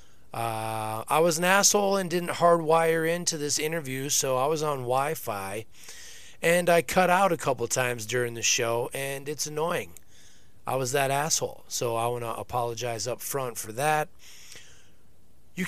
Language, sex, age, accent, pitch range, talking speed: English, male, 30-49, American, 125-155 Hz, 165 wpm